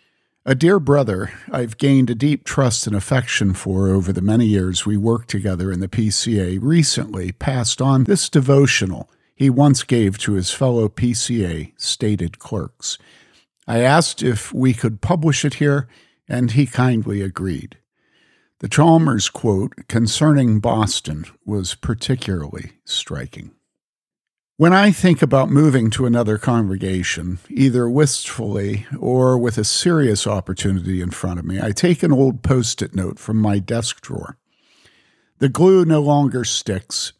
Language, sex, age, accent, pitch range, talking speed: English, male, 50-69, American, 105-140 Hz, 145 wpm